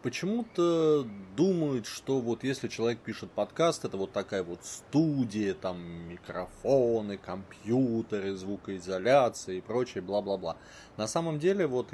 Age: 20-39